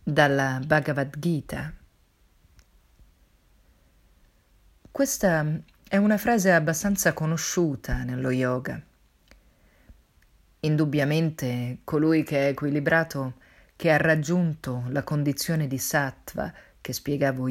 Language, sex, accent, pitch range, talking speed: Italian, female, native, 130-180 Hz, 85 wpm